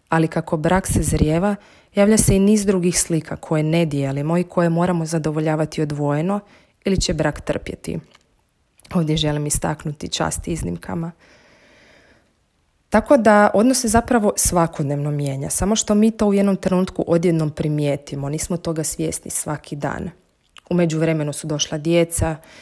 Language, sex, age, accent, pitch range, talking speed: Croatian, female, 30-49, native, 150-180 Hz, 145 wpm